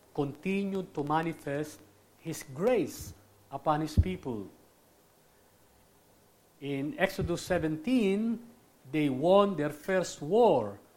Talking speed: 90 wpm